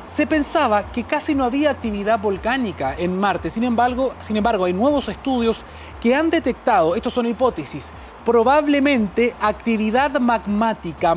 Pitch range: 220-285 Hz